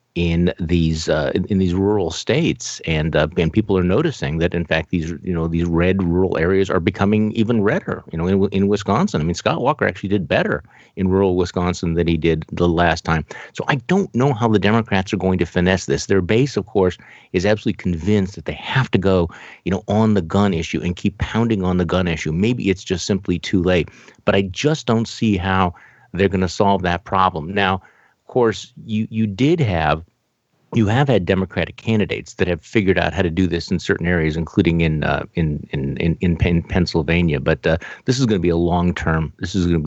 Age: 50-69